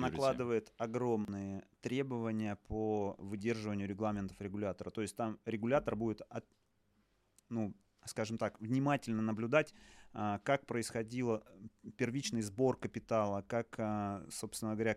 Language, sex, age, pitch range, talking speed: Russian, male, 30-49, 105-125 Hz, 100 wpm